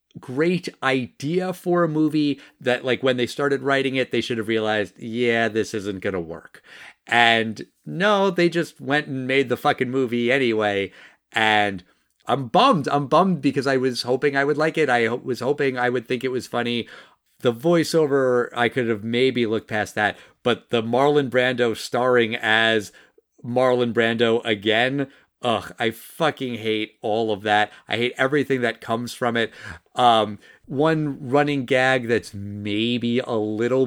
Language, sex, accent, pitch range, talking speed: English, male, American, 110-135 Hz, 170 wpm